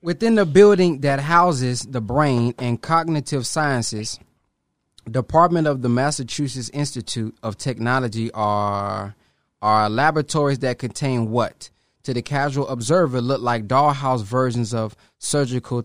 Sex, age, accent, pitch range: male, 20-39, American, 120-165 Hz